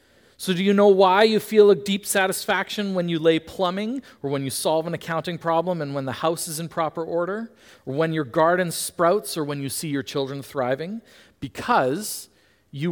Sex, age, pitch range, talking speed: male, 40-59, 130-205 Hz, 200 wpm